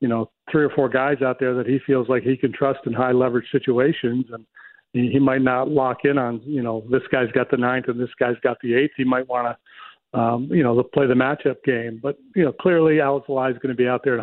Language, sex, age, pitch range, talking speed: English, male, 40-59, 125-140 Hz, 260 wpm